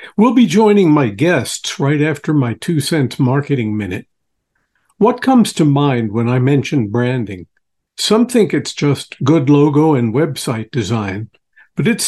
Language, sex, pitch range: English, male, 135-170 Hz